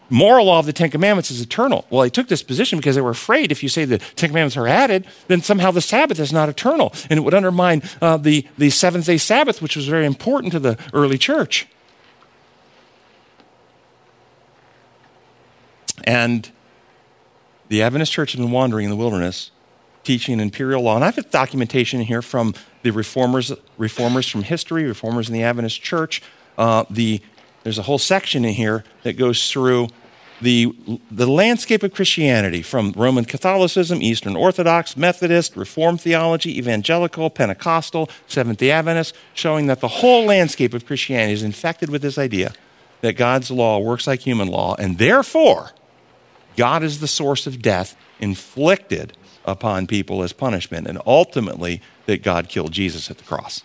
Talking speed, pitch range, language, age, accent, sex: 165 wpm, 115-165 Hz, English, 50-69, American, male